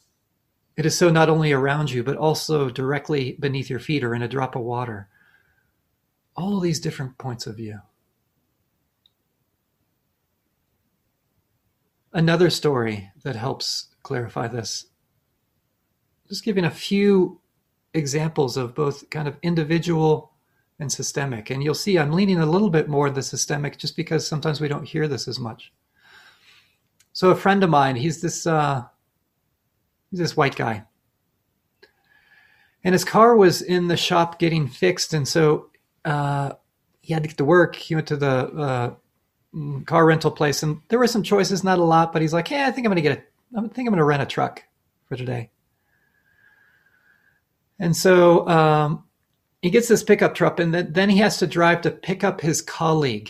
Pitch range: 135-175 Hz